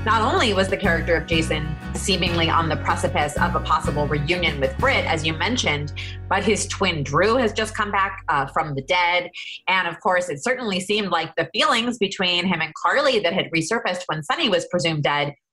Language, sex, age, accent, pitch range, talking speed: English, female, 30-49, American, 160-210 Hz, 205 wpm